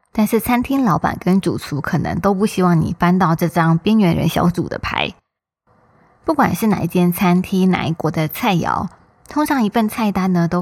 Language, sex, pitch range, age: Chinese, female, 170-210 Hz, 20-39